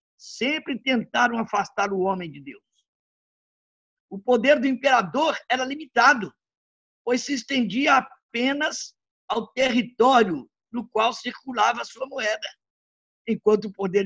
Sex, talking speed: male, 120 wpm